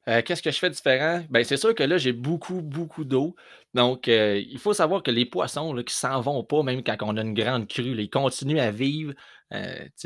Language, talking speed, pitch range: French, 250 wpm, 110-135 Hz